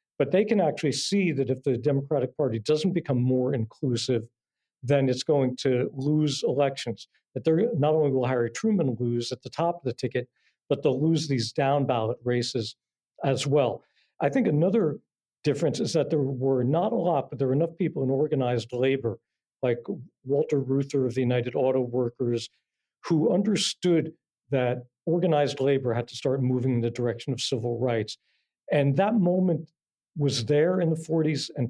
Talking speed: 175 wpm